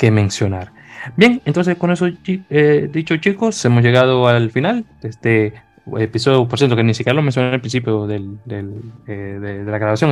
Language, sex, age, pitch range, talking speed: Spanish, male, 20-39, 110-130 Hz, 190 wpm